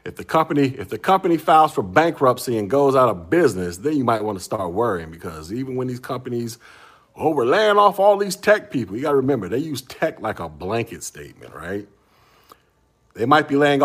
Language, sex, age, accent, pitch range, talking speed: English, male, 50-69, American, 100-145 Hz, 215 wpm